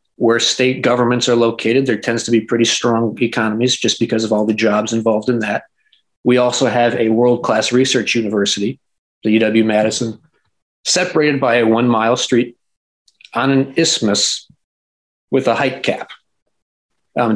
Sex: male